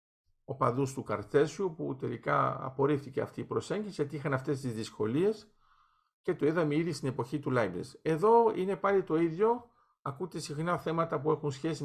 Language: Greek